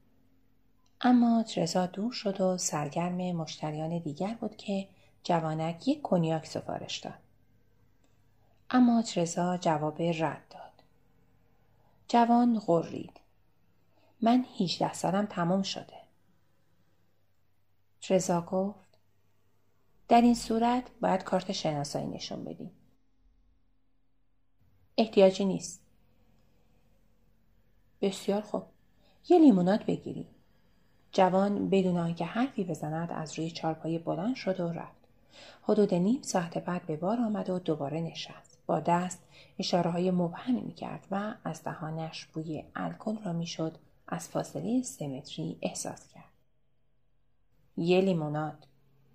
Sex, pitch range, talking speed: female, 130-195 Hz, 105 wpm